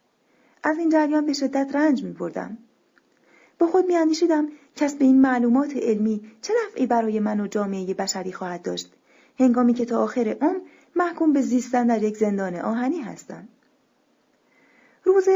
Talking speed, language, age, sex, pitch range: 150 wpm, Persian, 30-49, female, 230-295 Hz